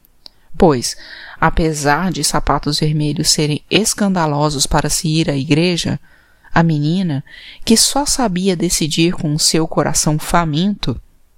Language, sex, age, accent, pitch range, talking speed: Portuguese, female, 20-39, Brazilian, 150-195 Hz, 120 wpm